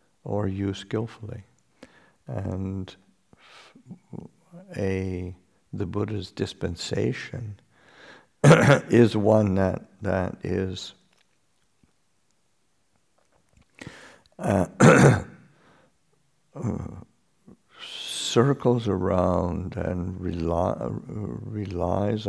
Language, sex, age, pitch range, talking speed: English, male, 60-79, 95-110 Hz, 50 wpm